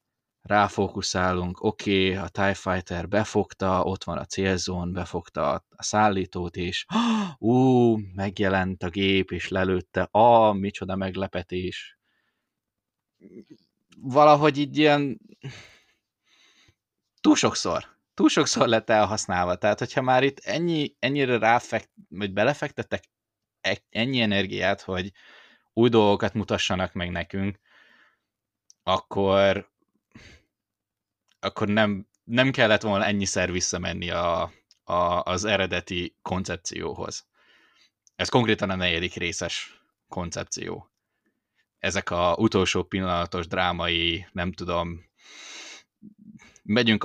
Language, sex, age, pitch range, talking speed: Hungarian, male, 20-39, 90-110 Hz, 100 wpm